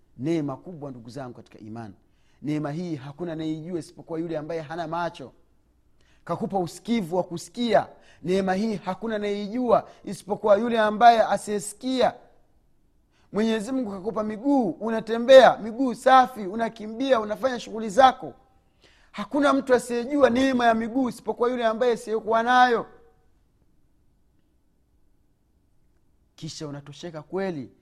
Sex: male